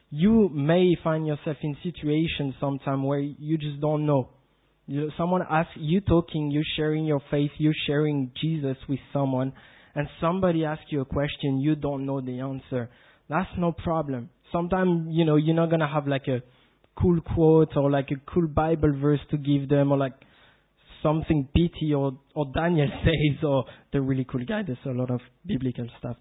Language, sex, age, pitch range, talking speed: English, male, 20-39, 140-170 Hz, 185 wpm